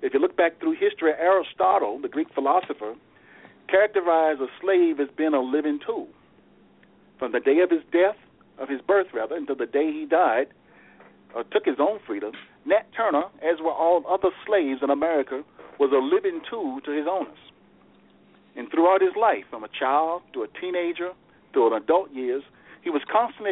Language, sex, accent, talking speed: English, male, American, 180 wpm